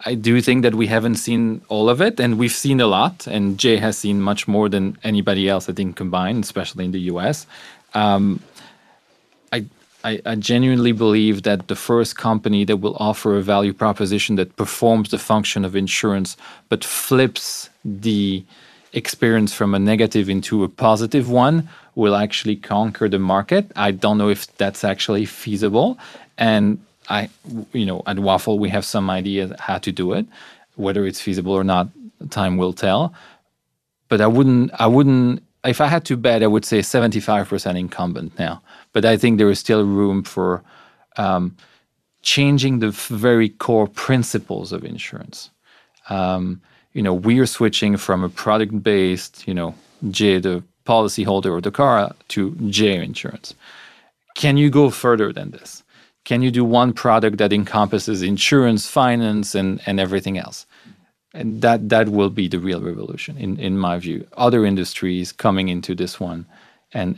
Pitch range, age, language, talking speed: 95-115 Hz, 30-49, English, 170 wpm